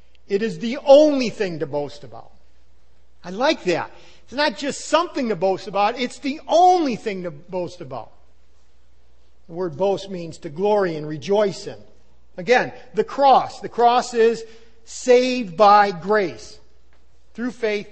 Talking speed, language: 150 wpm, English